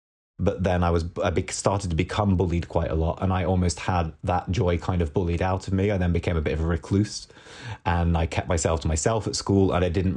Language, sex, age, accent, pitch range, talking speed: English, male, 30-49, British, 80-95 Hz, 255 wpm